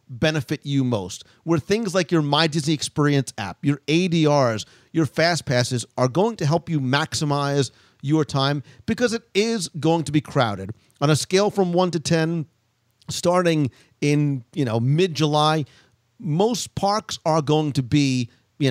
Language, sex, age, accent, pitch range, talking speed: English, male, 40-59, American, 135-170 Hz, 160 wpm